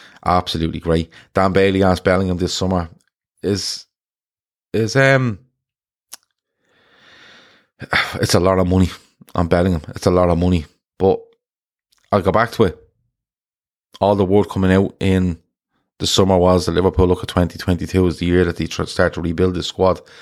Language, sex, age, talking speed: English, male, 30-49, 160 wpm